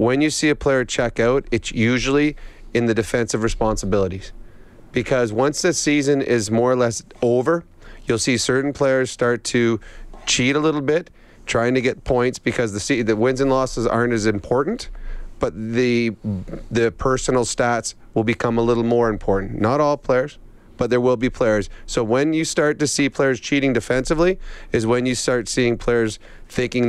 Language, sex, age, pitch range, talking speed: English, male, 30-49, 115-130 Hz, 180 wpm